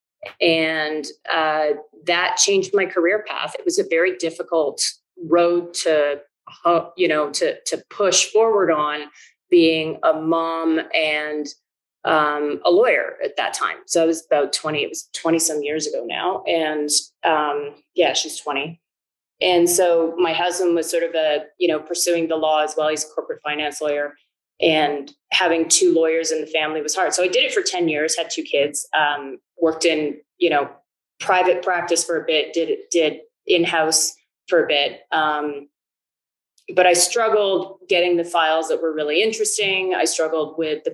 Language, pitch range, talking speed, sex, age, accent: English, 155-180 Hz, 175 wpm, female, 30-49, American